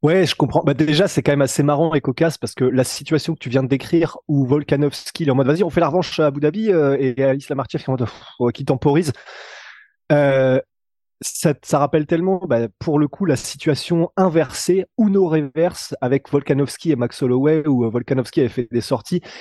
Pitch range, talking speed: 125-170 Hz, 200 wpm